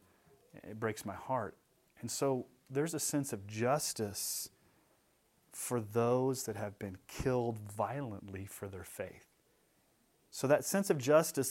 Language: English